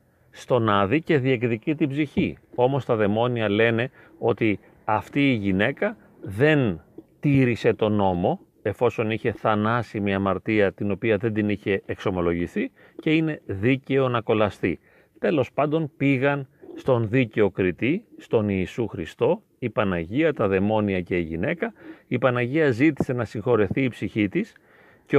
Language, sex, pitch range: Greek, male, 100-135 Hz